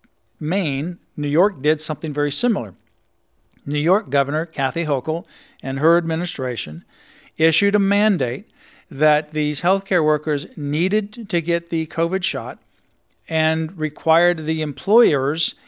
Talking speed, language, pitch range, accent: 125 wpm, English, 150-185 Hz, American